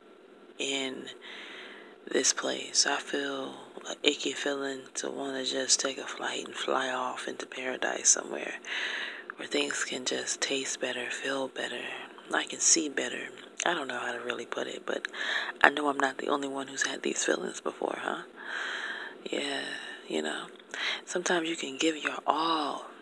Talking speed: 165 wpm